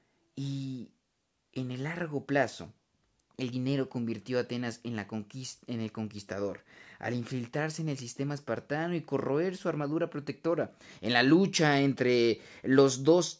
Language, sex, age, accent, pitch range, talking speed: Spanish, male, 30-49, Mexican, 120-150 Hz, 150 wpm